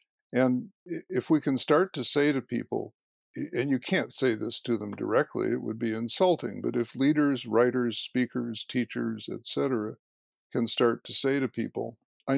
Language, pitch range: English, 120-155 Hz